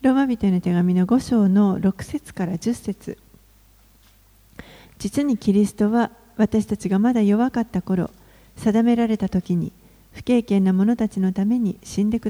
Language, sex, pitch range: Japanese, female, 190-230 Hz